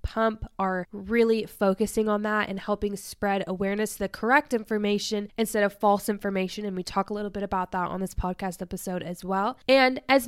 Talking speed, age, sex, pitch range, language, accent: 200 wpm, 10-29, female, 200-245 Hz, English, American